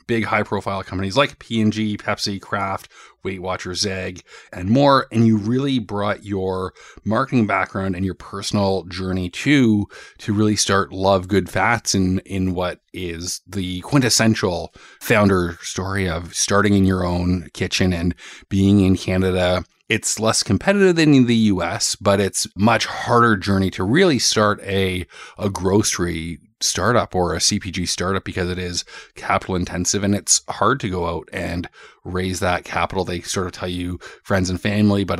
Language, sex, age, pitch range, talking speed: English, male, 30-49, 95-110 Hz, 160 wpm